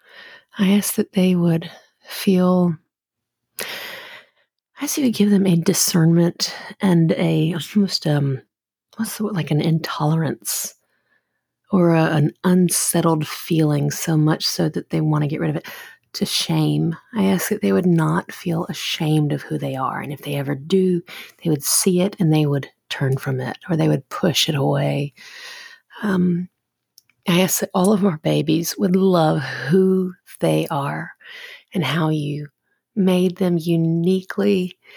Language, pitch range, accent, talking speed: English, 160-200 Hz, American, 160 wpm